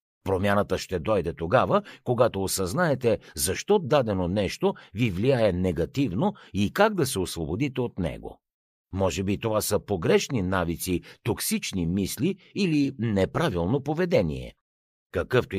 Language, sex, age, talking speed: Bulgarian, male, 60-79, 120 wpm